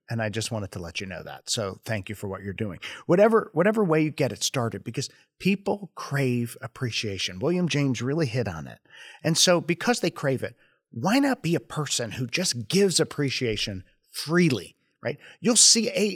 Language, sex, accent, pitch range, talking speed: English, male, American, 110-160 Hz, 195 wpm